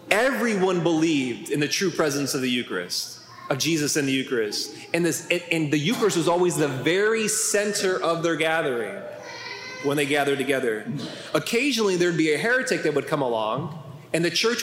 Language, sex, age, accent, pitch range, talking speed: English, male, 20-39, American, 150-185 Hz, 170 wpm